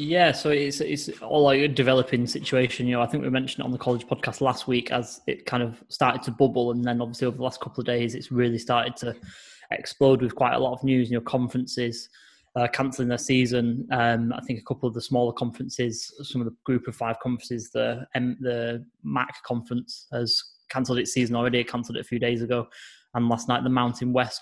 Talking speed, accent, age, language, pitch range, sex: 235 wpm, British, 10-29, English, 120-130 Hz, male